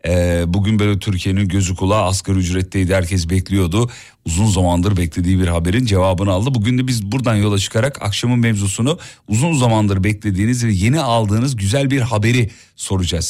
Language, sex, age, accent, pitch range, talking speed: Turkish, male, 40-59, native, 95-125 Hz, 155 wpm